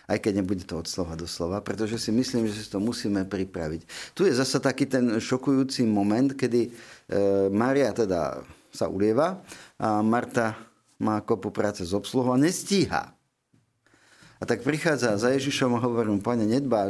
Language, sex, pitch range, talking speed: Slovak, male, 100-130 Hz, 170 wpm